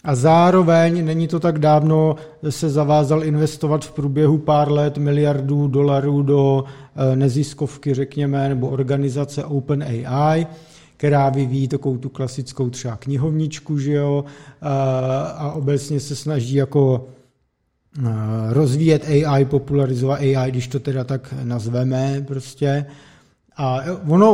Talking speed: 115 wpm